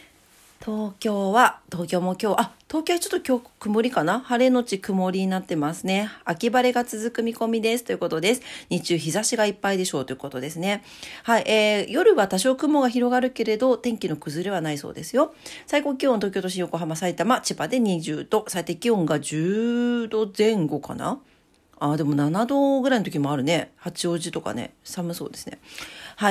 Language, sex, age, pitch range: Japanese, female, 40-59, 170-245 Hz